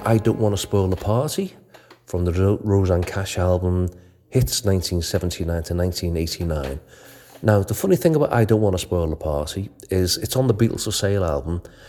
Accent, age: British, 40-59